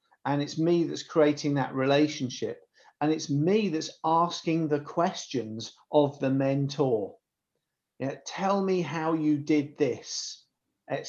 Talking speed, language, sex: 130 wpm, English, male